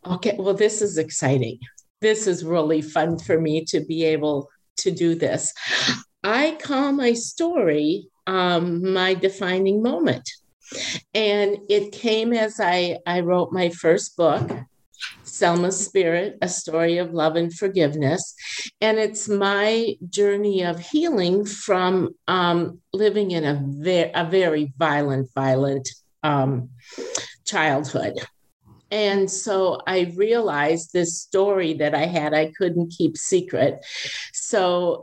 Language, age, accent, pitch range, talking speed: English, 50-69, American, 160-205 Hz, 130 wpm